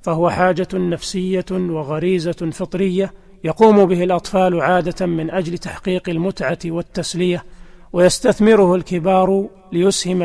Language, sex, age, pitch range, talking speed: Arabic, male, 40-59, 175-195 Hz, 100 wpm